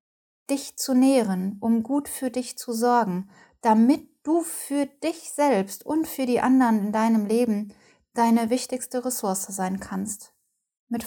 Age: 10-29